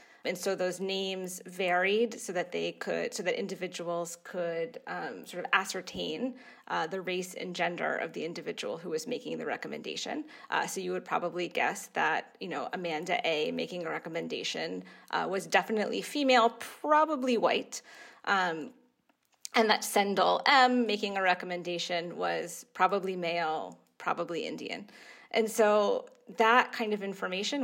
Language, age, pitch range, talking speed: English, 20-39, 180-235 Hz, 150 wpm